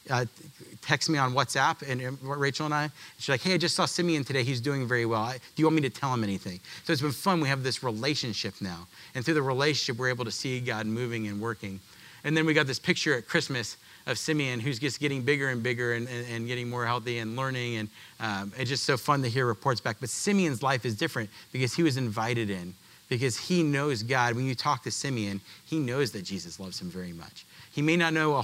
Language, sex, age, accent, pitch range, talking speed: English, male, 40-59, American, 115-145 Hz, 250 wpm